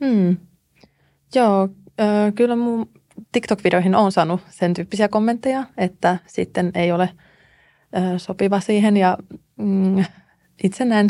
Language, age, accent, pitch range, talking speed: Finnish, 20-39, native, 170-195 Hz, 120 wpm